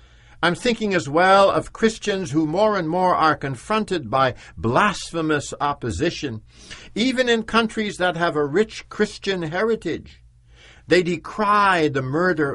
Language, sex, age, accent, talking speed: English, male, 60-79, American, 135 wpm